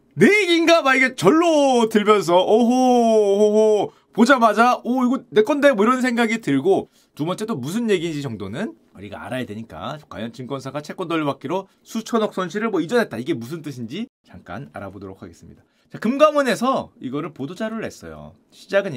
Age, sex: 30-49, male